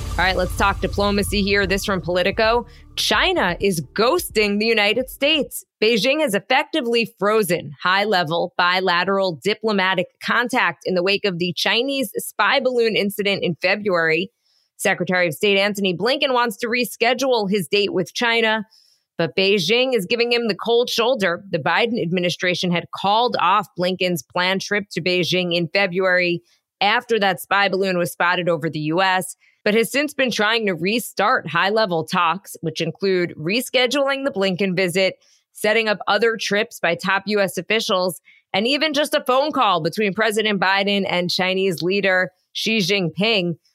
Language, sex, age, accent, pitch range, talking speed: English, female, 20-39, American, 180-230 Hz, 155 wpm